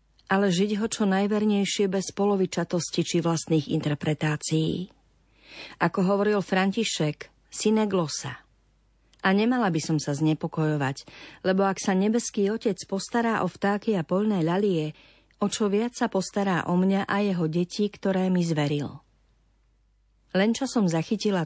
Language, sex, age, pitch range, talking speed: Slovak, female, 40-59, 155-205 Hz, 135 wpm